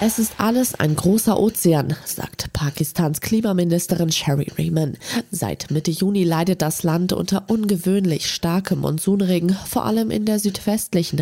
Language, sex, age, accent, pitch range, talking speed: German, female, 20-39, German, 150-190 Hz, 140 wpm